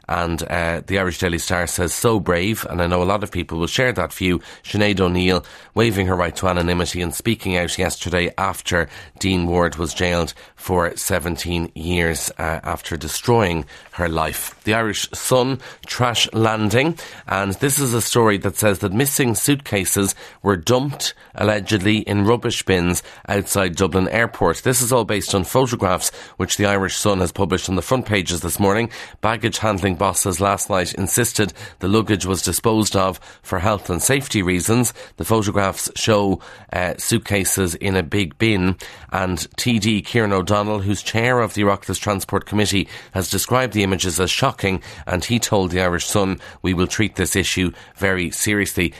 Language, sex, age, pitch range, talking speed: English, male, 30-49, 90-105 Hz, 175 wpm